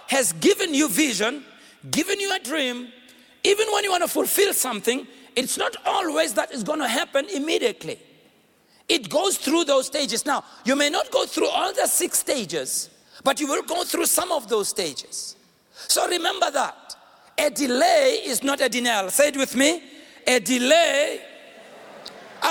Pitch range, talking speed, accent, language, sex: 245-320 Hz, 170 wpm, South African, English, male